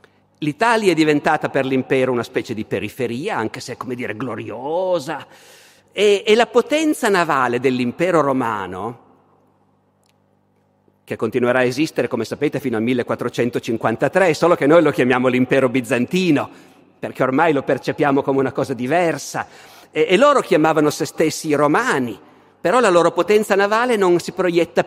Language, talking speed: Italian, 150 wpm